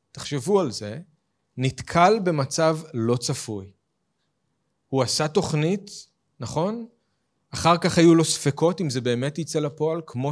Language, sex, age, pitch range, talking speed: Hebrew, male, 40-59, 130-175 Hz, 130 wpm